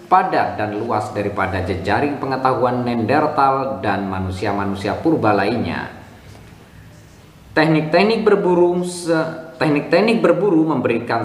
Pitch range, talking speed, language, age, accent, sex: 110-155 Hz, 90 wpm, Indonesian, 20-39, native, male